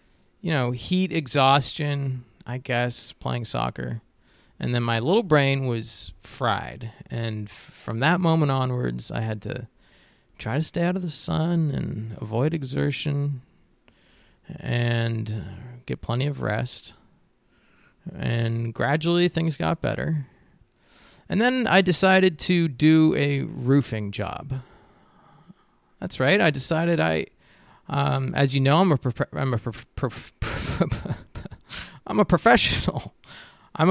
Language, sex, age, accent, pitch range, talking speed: English, male, 20-39, American, 115-165 Hz, 130 wpm